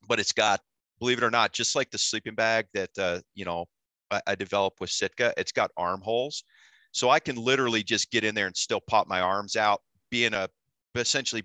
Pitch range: 95-125 Hz